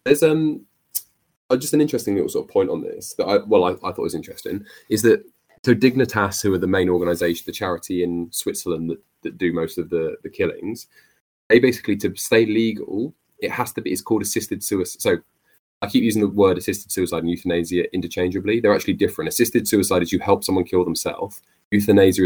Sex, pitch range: male, 90-105 Hz